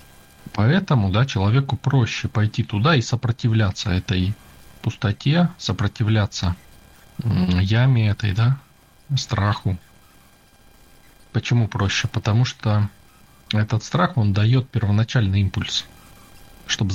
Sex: male